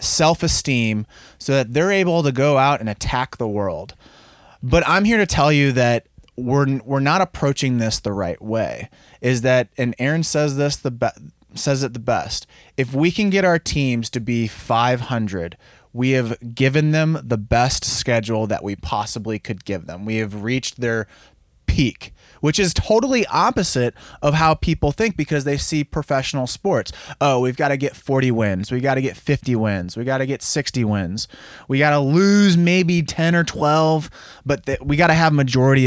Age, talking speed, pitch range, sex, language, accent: 20-39, 185 wpm, 115-150 Hz, male, English, American